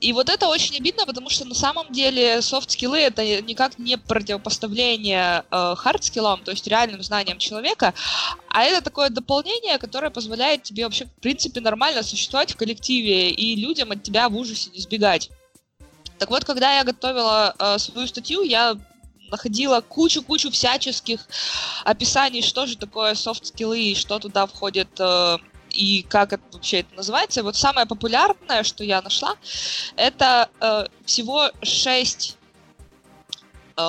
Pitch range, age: 200-260 Hz, 20-39